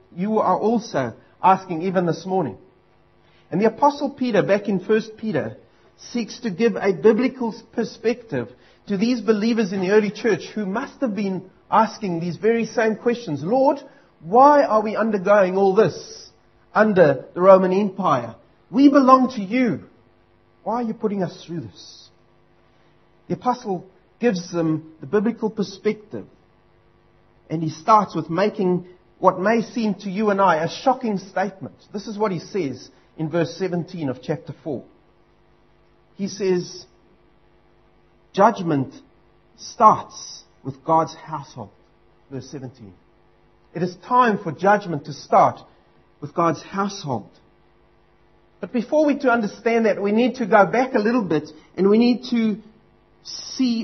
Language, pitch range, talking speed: English, 160-225 Hz, 145 wpm